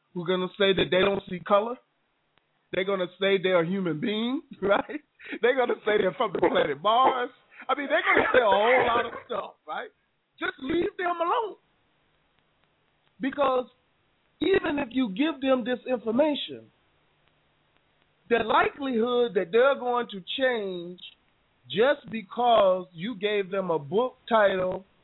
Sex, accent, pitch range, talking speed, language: male, American, 180-250 Hz, 160 wpm, English